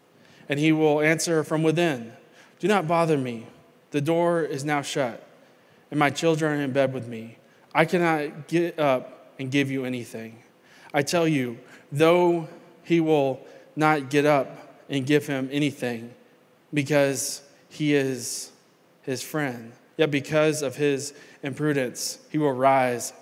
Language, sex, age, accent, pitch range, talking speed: English, male, 20-39, American, 130-150 Hz, 145 wpm